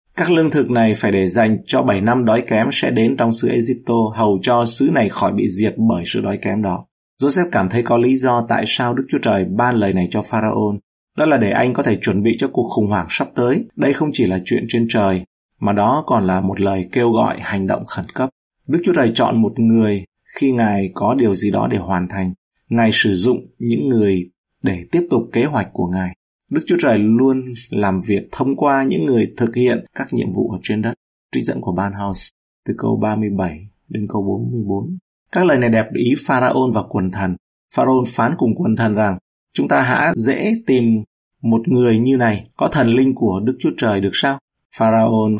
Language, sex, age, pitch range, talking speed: Vietnamese, male, 30-49, 100-125 Hz, 220 wpm